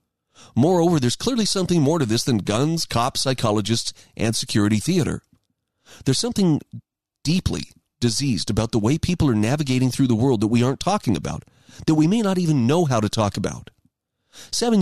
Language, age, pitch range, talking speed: English, 40-59, 115-165 Hz, 175 wpm